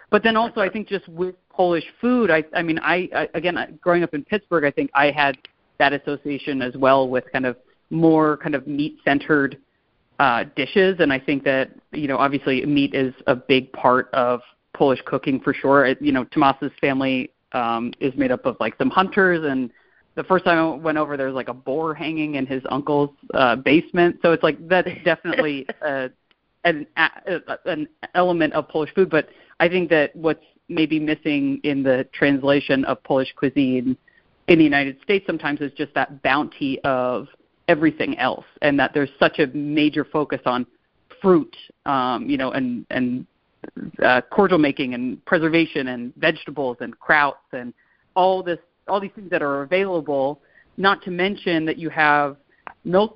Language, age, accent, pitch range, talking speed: English, 30-49, American, 135-175 Hz, 175 wpm